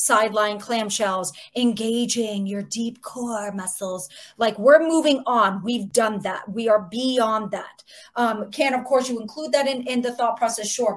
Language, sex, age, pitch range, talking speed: English, female, 30-49, 205-255 Hz, 170 wpm